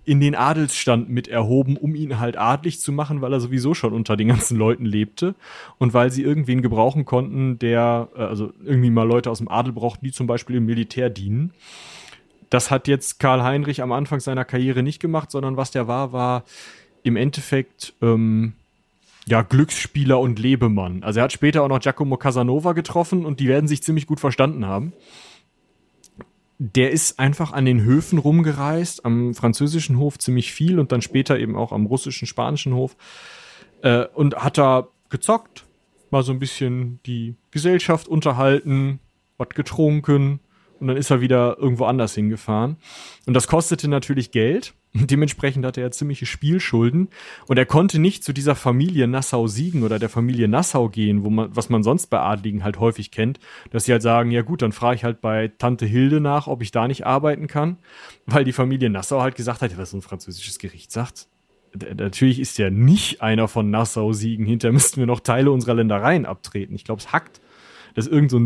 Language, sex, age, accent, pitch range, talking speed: German, male, 30-49, German, 115-145 Hz, 190 wpm